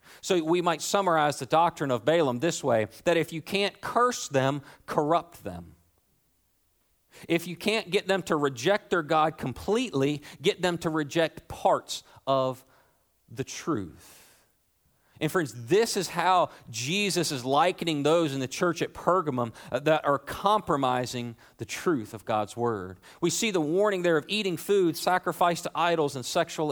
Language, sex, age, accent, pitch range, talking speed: English, male, 40-59, American, 125-185 Hz, 160 wpm